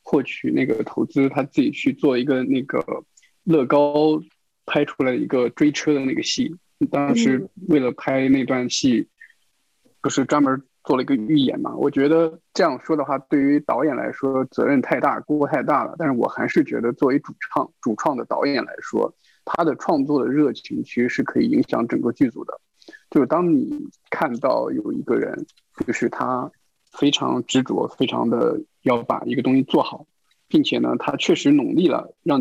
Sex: male